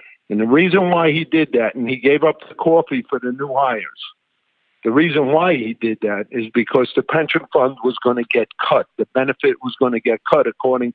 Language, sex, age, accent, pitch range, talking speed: English, male, 50-69, American, 125-165 Hz, 225 wpm